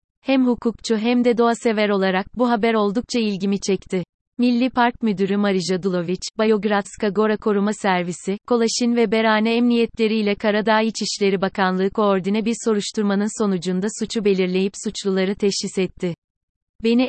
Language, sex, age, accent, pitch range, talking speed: Turkish, female, 30-49, native, 190-225 Hz, 135 wpm